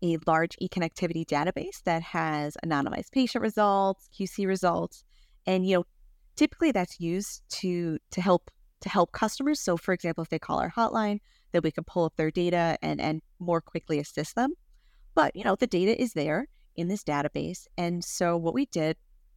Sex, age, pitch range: female, 30-49, 160-195 Hz